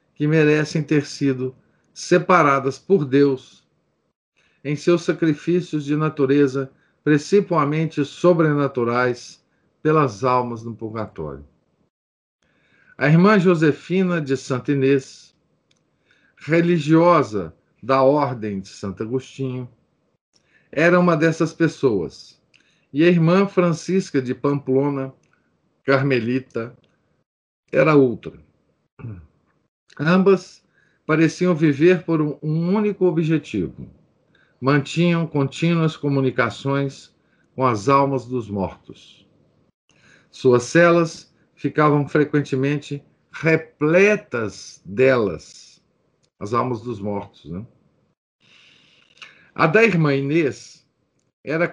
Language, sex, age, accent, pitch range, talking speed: Portuguese, male, 50-69, Brazilian, 130-165 Hz, 85 wpm